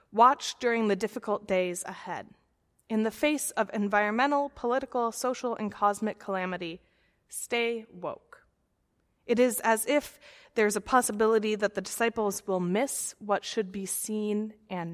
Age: 20-39